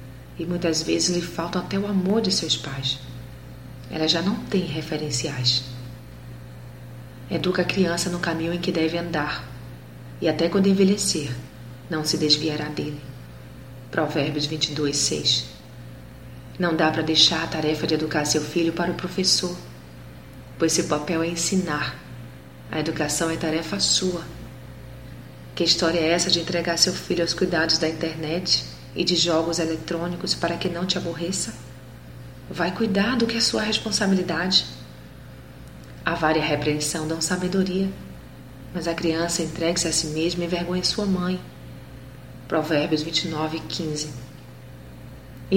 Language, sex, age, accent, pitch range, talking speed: Portuguese, female, 30-49, Brazilian, 125-175 Hz, 140 wpm